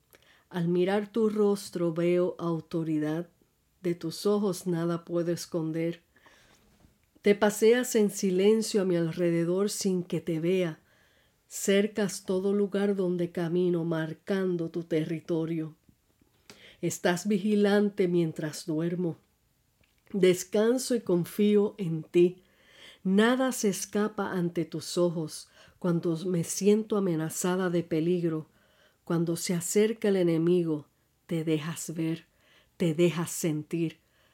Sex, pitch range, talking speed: female, 165-195 Hz, 110 wpm